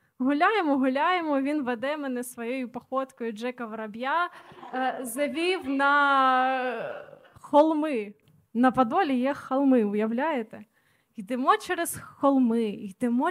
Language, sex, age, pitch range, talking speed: Ukrainian, female, 20-39, 235-285 Hz, 95 wpm